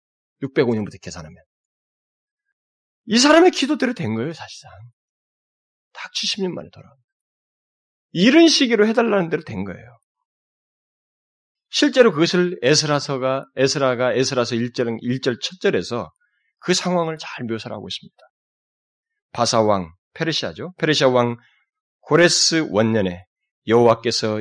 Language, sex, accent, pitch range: Korean, male, native, 125-180 Hz